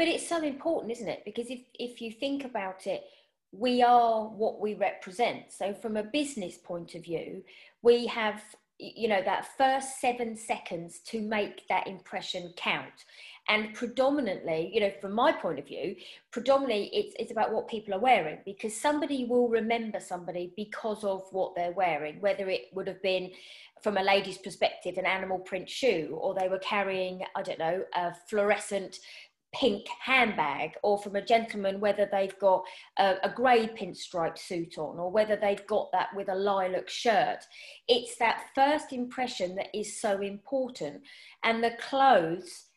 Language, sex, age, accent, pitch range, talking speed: English, female, 30-49, British, 190-235 Hz, 170 wpm